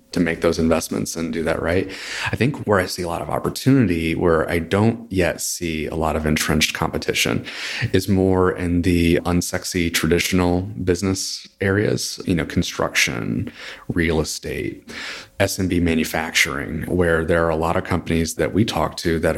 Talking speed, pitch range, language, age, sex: 165 wpm, 80-90 Hz, English, 30-49, male